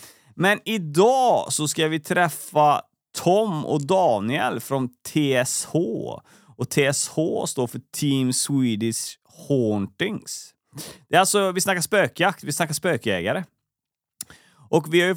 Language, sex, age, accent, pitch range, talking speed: Swedish, male, 30-49, native, 125-160 Hz, 110 wpm